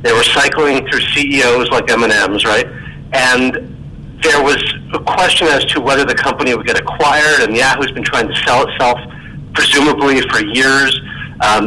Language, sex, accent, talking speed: English, male, American, 175 wpm